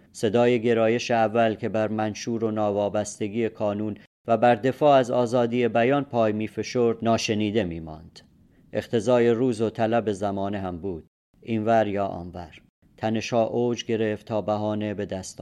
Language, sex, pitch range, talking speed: Persian, male, 100-115 Hz, 150 wpm